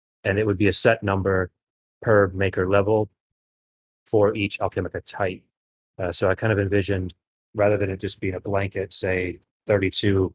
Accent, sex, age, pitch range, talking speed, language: American, male, 30-49, 95-110 Hz, 170 wpm, English